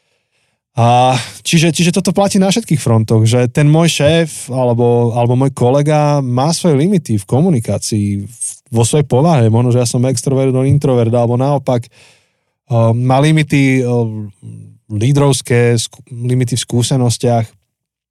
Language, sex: Slovak, male